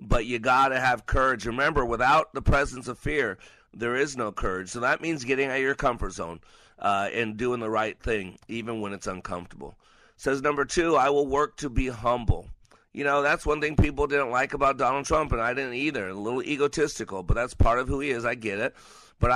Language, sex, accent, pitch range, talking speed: English, male, American, 110-140 Hz, 225 wpm